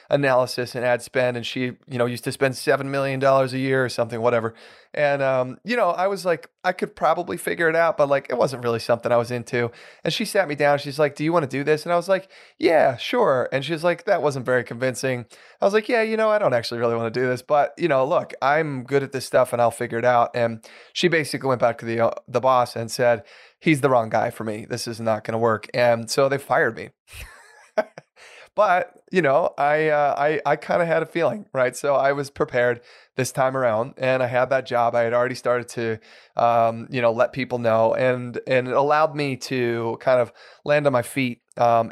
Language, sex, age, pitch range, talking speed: English, male, 20-39, 115-145 Hz, 250 wpm